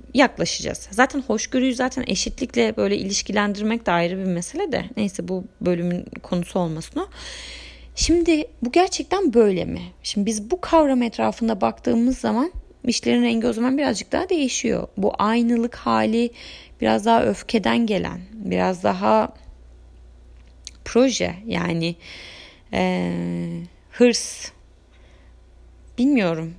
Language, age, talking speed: Turkish, 30-49, 115 wpm